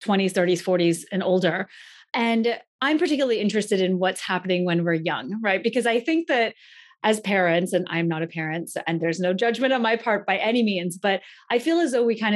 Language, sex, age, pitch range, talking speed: English, female, 30-49, 180-230 Hz, 215 wpm